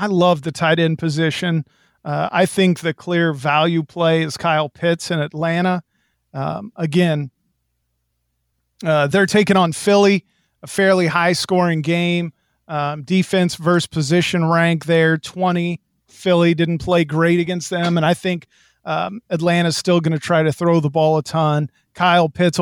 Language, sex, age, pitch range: English, male, 40-59, 155-180 Hz